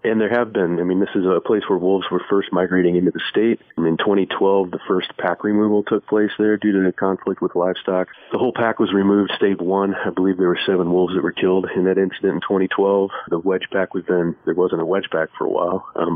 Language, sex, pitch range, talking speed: English, male, 90-100 Hz, 255 wpm